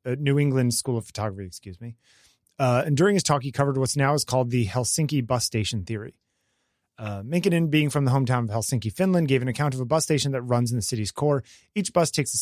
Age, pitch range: 30-49, 115-150 Hz